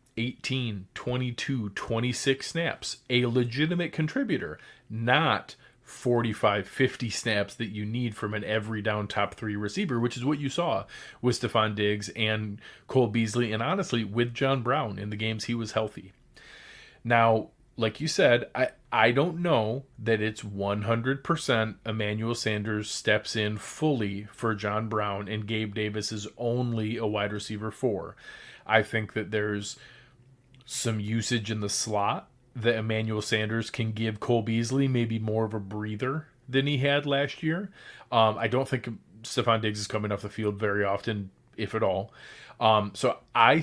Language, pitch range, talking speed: English, 110-130 Hz, 160 wpm